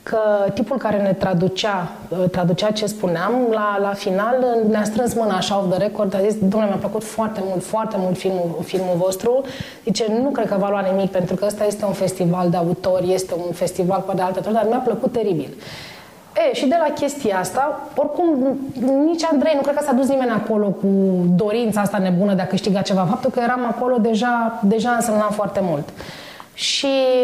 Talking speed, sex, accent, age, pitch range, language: 195 wpm, female, native, 20-39, 190-250 Hz, Romanian